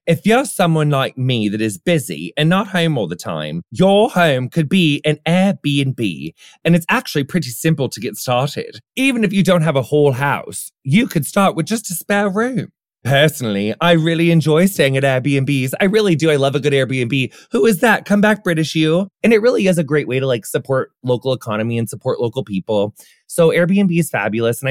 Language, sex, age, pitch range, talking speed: English, male, 30-49, 130-185 Hz, 210 wpm